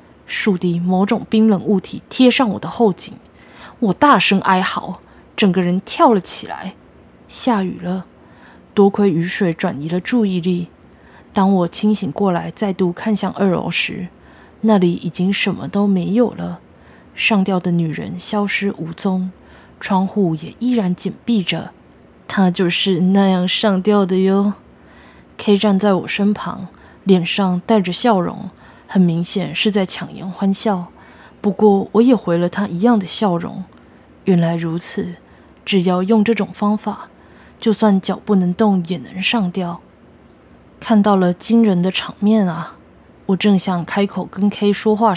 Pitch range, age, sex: 180-210 Hz, 20-39, female